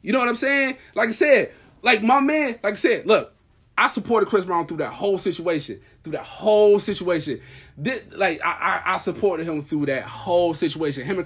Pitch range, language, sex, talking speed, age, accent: 145-240 Hz, English, male, 215 wpm, 20-39, American